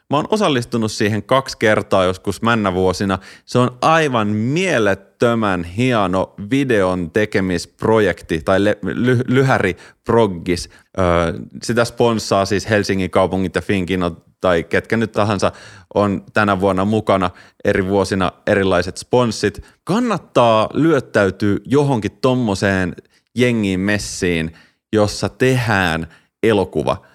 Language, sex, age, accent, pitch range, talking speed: Finnish, male, 30-49, native, 95-115 Hz, 110 wpm